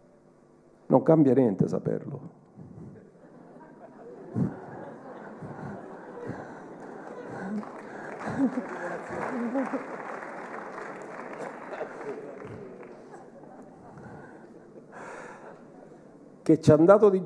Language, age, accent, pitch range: Italian, 50-69, native, 115-170 Hz